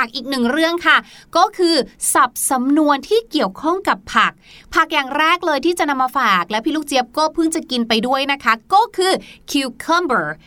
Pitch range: 235-325 Hz